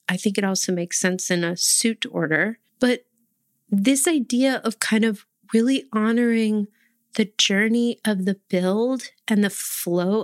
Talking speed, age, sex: 150 wpm, 30-49, female